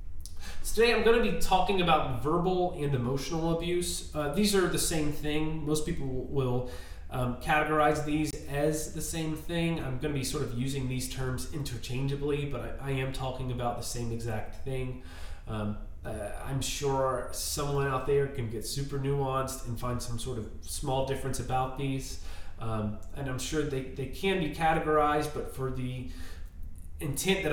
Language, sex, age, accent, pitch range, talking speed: English, male, 30-49, American, 115-155 Hz, 175 wpm